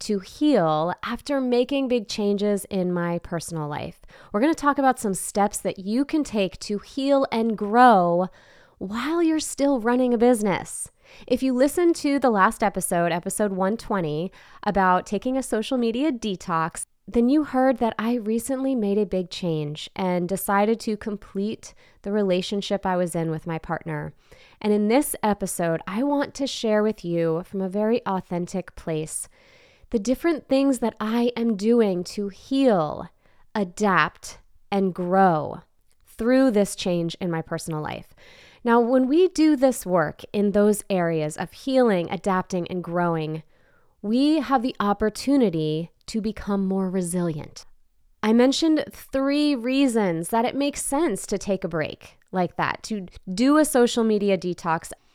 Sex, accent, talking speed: female, American, 155 wpm